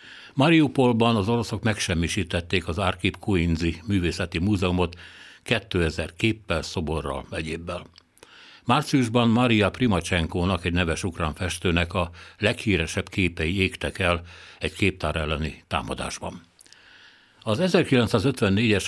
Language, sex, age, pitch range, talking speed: Hungarian, male, 60-79, 85-105 Hz, 100 wpm